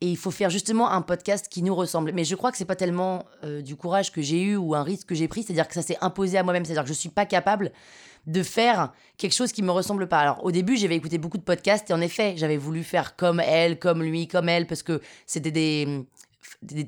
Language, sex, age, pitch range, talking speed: French, female, 20-39, 165-215 Hz, 275 wpm